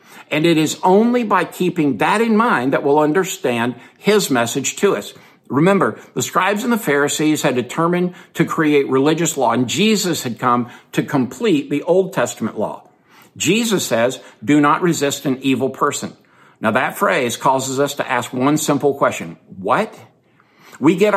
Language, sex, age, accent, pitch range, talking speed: English, male, 60-79, American, 130-175 Hz, 165 wpm